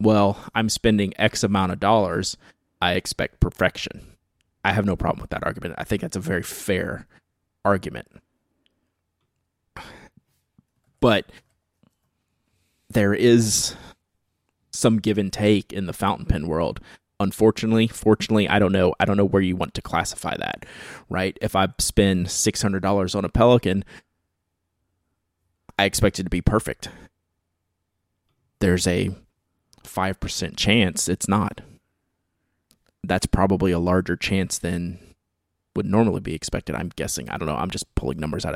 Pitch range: 85-105 Hz